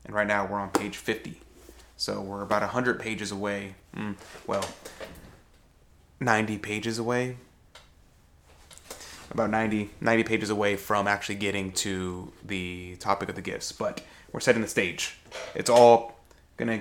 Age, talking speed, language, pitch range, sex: 20-39, 140 wpm, English, 100-120 Hz, male